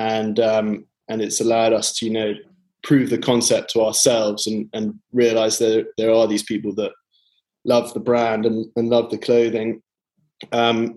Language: English